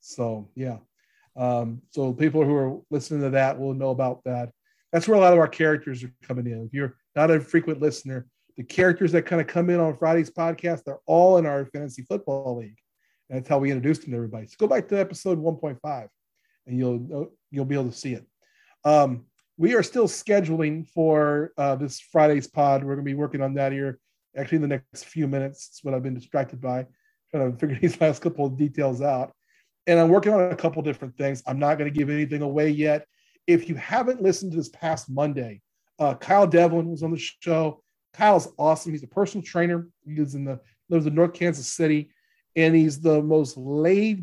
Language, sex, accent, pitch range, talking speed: English, male, American, 135-170 Hz, 220 wpm